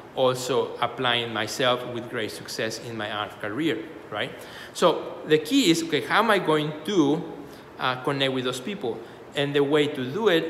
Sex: male